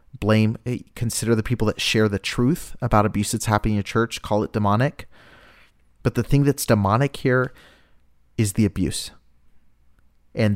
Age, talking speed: 30-49, 160 wpm